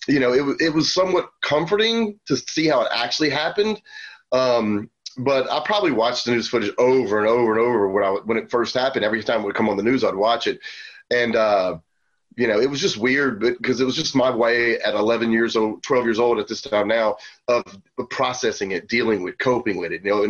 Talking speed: 235 wpm